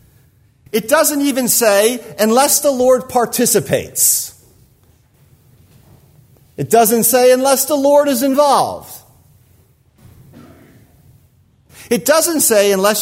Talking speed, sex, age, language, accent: 90 wpm, male, 50-69, English, American